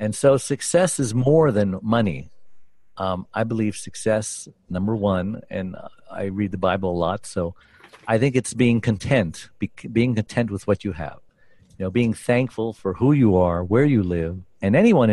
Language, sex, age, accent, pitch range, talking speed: English, male, 50-69, American, 95-120 Hz, 180 wpm